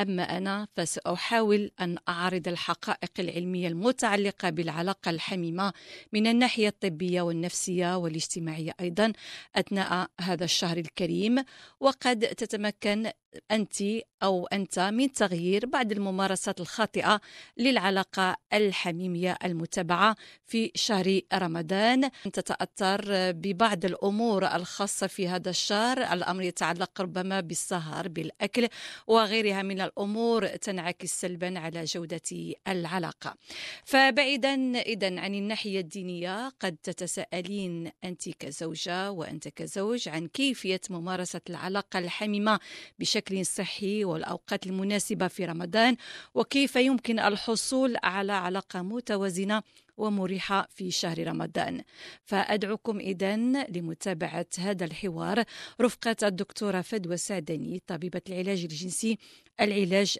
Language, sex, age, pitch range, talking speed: Arabic, female, 50-69, 180-215 Hz, 100 wpm